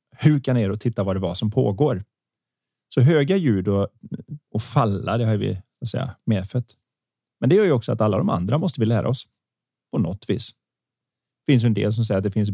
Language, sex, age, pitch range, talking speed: Swedish, male, 30-49, 110-135 Hz, 215 wpm